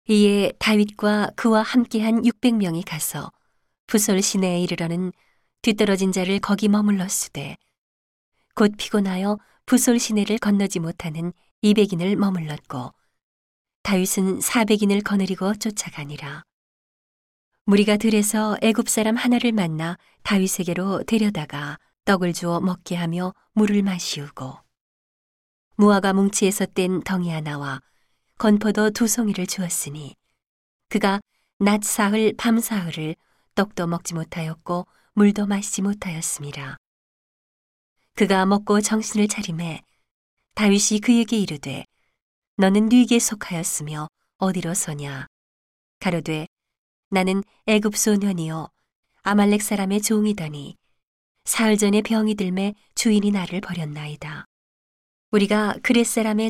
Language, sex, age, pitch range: Korean, female, 40-59, 170-210 Hz